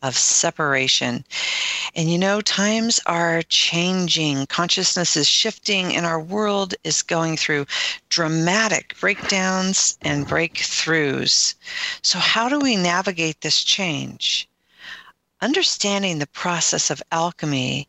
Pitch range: 150-190 Hz